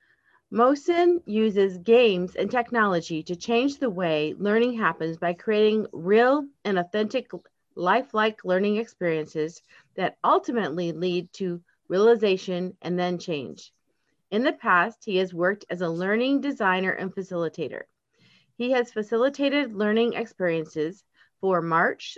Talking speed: 120 wpm